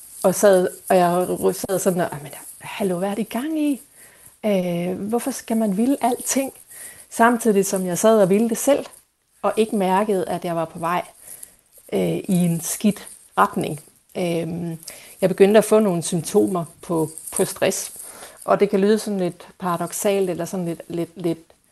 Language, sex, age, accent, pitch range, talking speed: Danish, female, 30-49, native, 175-215 Hz, 175 wpm